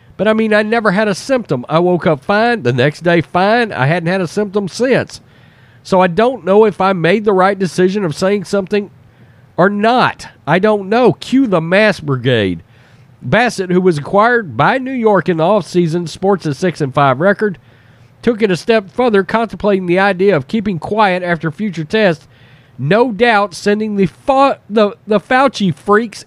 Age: 40-59